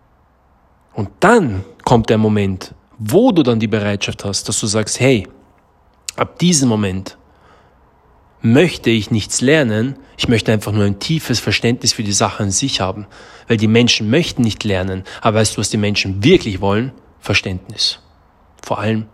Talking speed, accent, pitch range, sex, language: 165 wpm, German, 100-125 Hz, male, German